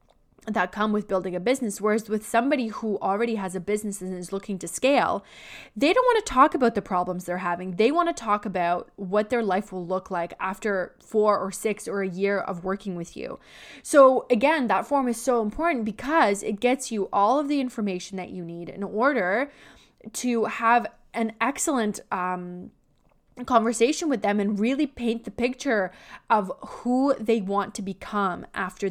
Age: 20-39